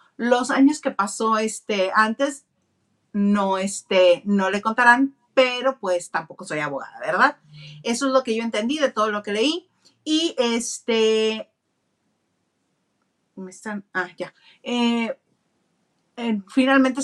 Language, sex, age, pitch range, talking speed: Spanish, female, 40-59, 185-255 Hz, 130 wpm